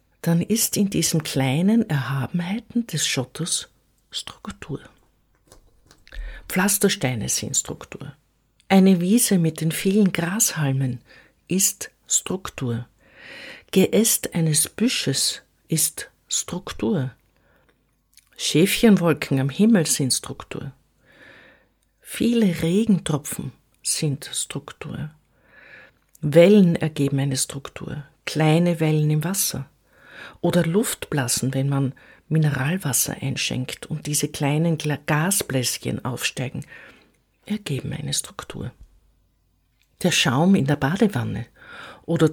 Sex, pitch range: female, 140-190 Hz